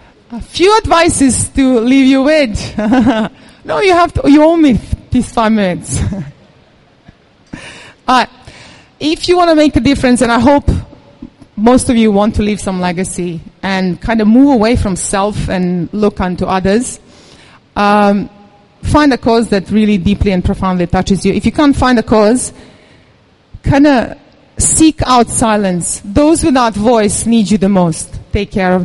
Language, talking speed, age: English, 165 wpm, 30-49